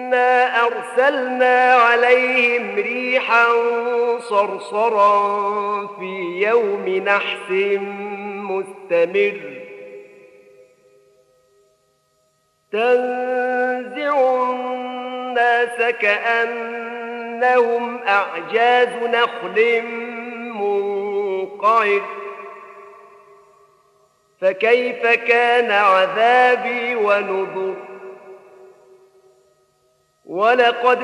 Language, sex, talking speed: Arabic, male, 35 wpm